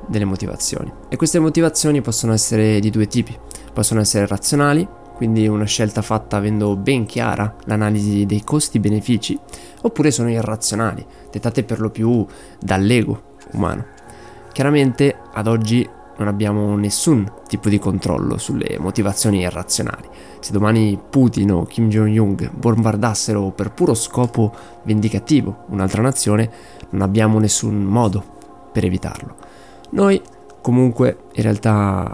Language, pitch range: Italian, 100-120 Hz